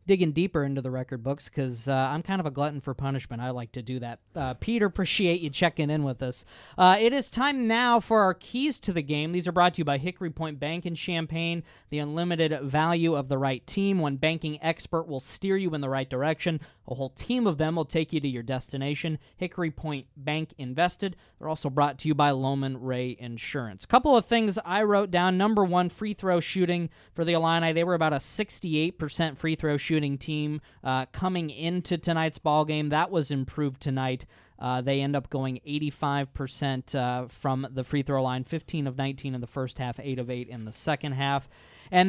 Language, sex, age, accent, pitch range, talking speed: English, male, 20-39, American, 135-175 Hz, 220 wpm